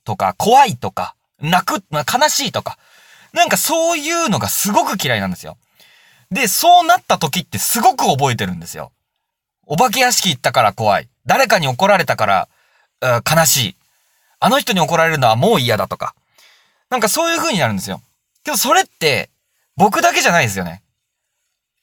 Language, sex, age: Japanese, male, 30-49